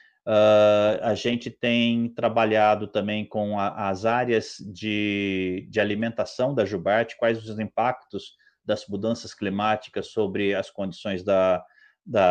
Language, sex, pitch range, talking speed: Portuguese, male, 105-135 Hz, 125 wpm